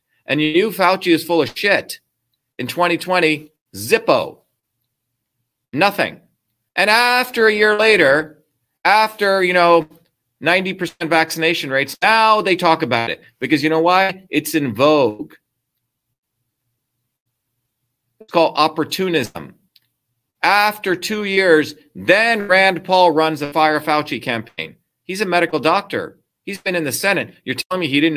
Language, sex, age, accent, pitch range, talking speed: English, male, 40-59, American, 125-175 Hz, 135 wpm